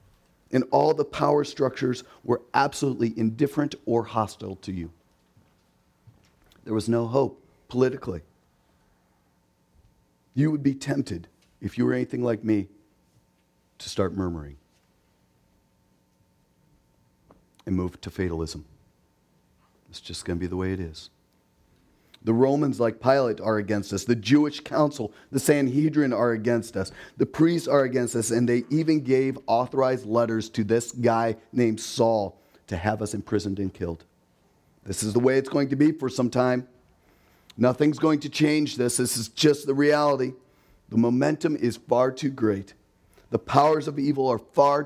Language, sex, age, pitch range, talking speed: English, male, 40-59, 95-135 Hz, 150 wpm